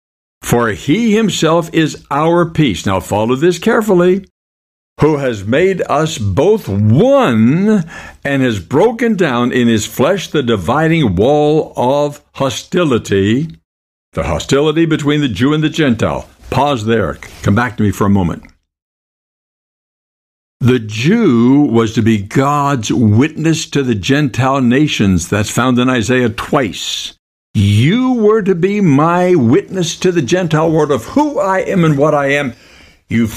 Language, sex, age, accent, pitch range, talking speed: English, male, 60-79, American, 105-160 Hz, 145 wpm